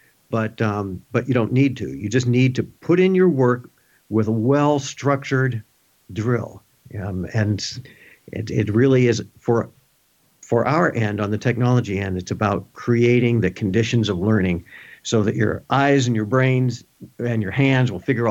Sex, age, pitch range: male, 50-69, 110-135 Hz